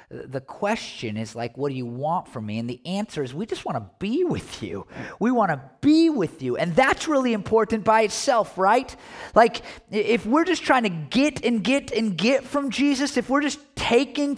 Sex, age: male, 30-49